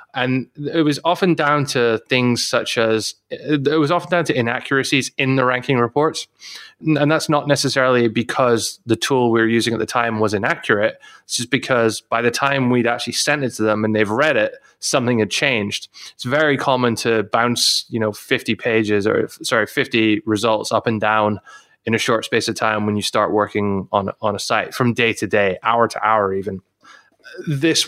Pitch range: 105-130 Hz